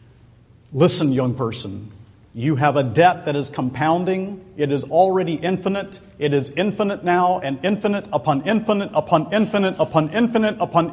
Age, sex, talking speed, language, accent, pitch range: 50-69, male, 150 wpm, English, American, 135-205 Hz